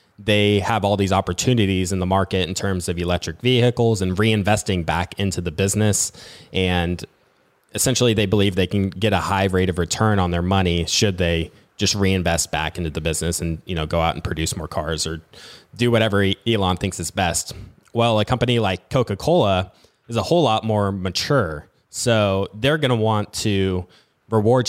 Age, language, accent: 20-39, English, American